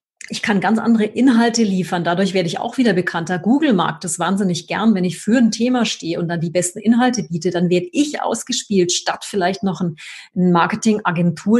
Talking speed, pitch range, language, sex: 195 wpm, 175-215 Hz, German, female